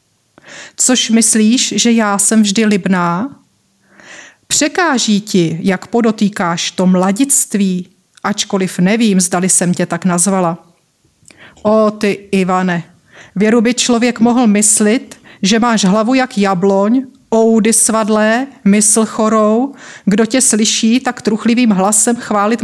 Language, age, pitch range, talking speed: Czech, 30-49, 185-225 Hz, 115 wpm